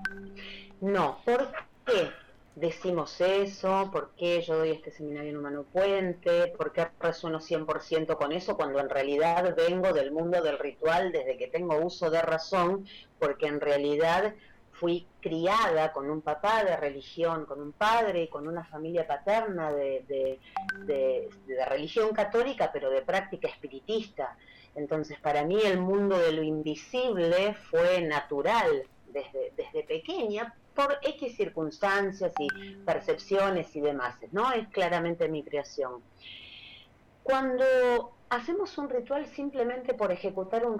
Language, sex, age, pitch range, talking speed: Spanish, female, 30-49, 155-225 Hz, 140 wpm